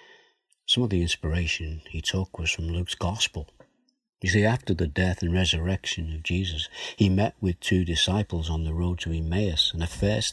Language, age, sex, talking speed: English, 60-79, male, 185 wpm